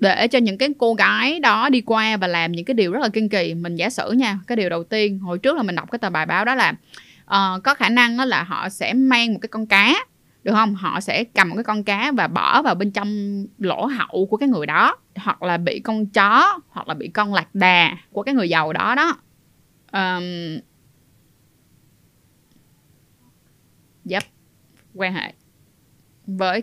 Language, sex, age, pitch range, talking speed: Vietnamese, female, 20-39, 185-245 Hz, 205 wpm